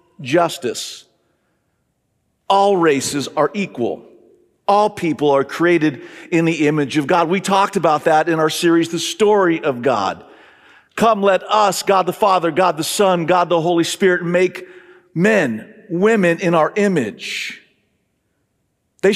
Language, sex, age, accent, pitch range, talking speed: English, male, 50-69, American, 170-215 Hz, 140 wpm